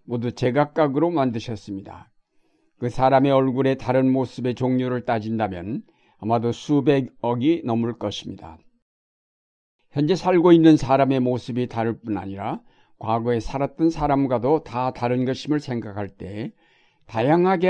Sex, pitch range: male, 115-150 Hz